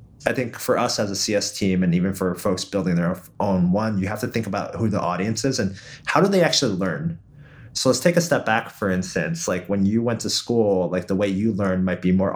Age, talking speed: 30-49, 255 wpm